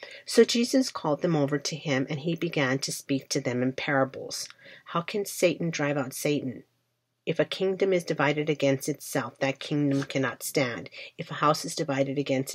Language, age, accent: English, 40-59, American